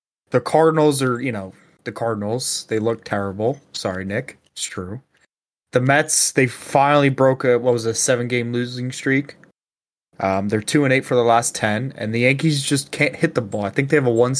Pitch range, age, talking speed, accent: 115-150 Hz, 20-39, 200 wpm, American